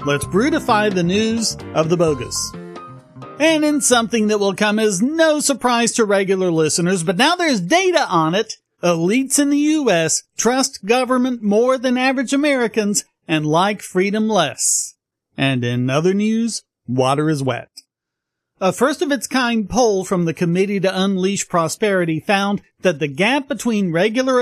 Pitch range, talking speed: 170-235 Hz, 150 wpm